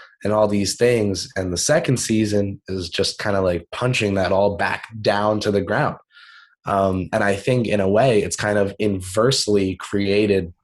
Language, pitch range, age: English, 95-110 Hz, 20-39